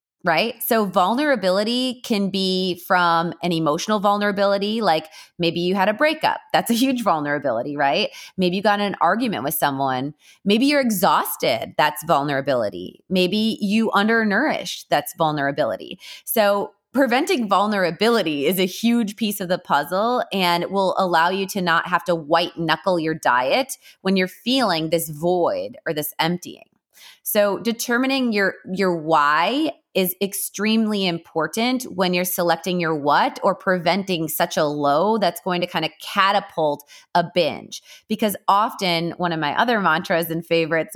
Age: 20-39